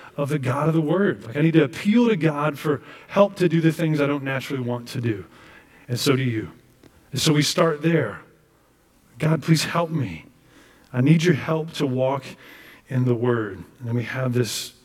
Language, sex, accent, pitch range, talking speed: English, male, American, 110-140 Hz, 210 wpm